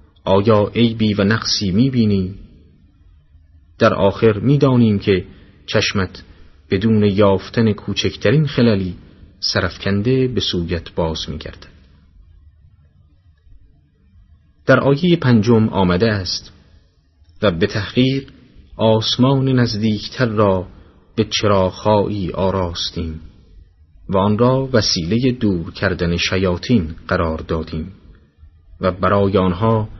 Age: 30-49